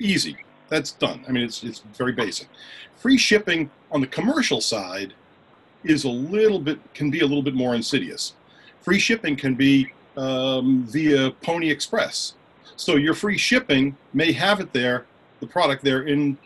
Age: 40-59